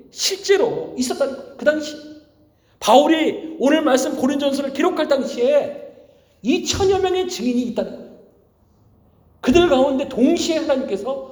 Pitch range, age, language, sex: 205-280 Hz, 40-59, Korean, male